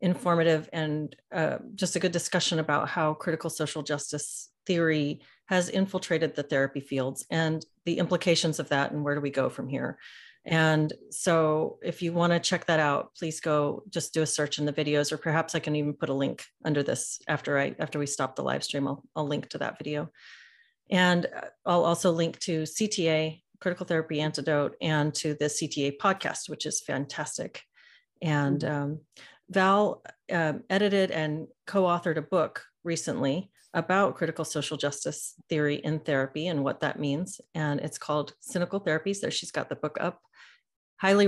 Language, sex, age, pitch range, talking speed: English, female, 40-59, 150-180 Hz, 175 wpm